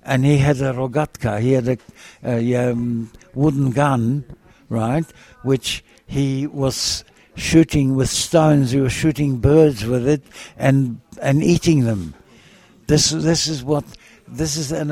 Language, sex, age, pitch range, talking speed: Hebrew, male, 60-79, 120-150 Hz, 150 wpm